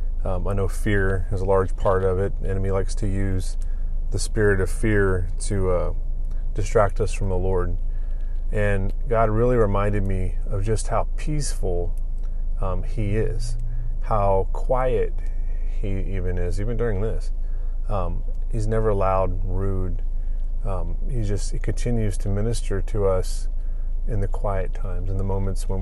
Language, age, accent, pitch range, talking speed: English, 30-49, American, 85-105 Hz, 160 wpm